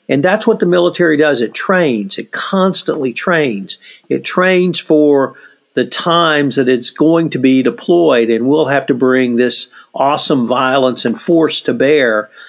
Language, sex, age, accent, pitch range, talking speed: English, male, 50-69, American, 130-180 Hz, 165 wpm